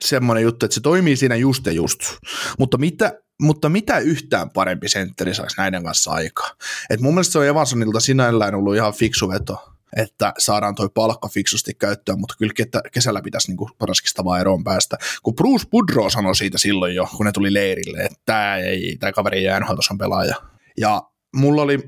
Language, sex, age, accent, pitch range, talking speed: Finnish, male, 20-39, native, 100-125 Hz, 185 wpm